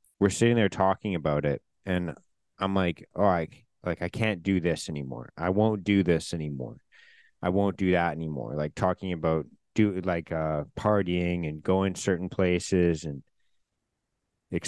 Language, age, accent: English, 30-49, American